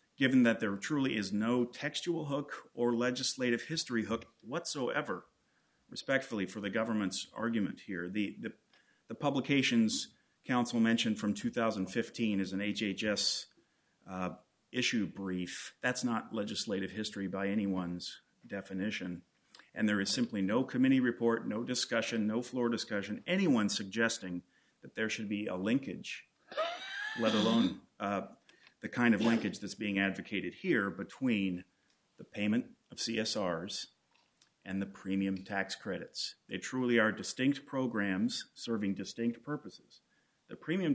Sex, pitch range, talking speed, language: male, 100-130 Hz, 135 wpm, English